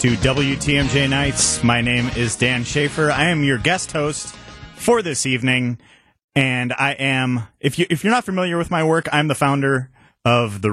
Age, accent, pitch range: 30-49, American, 120-140 Hz